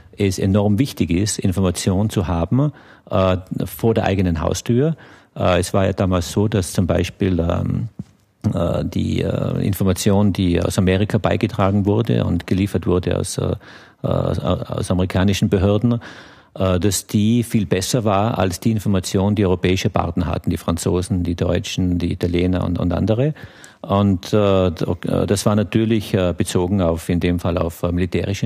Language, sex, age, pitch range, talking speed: German, male, 50-69, 90-115 Hz, 160 wpm